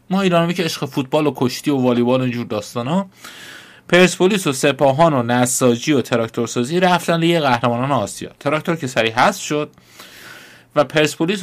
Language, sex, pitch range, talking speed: Persian, male, 110-145 Hz, 155 wpm